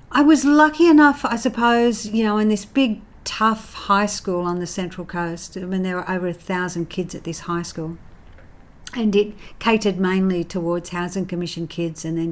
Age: 50-69